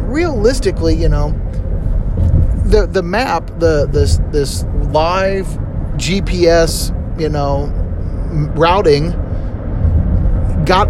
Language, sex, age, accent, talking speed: English, male, 30-49, American, 85 wpm